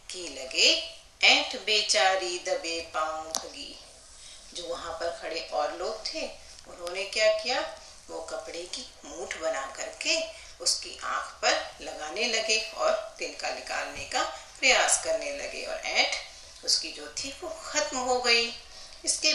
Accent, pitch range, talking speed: native, 180-295 Hz, 135 wpm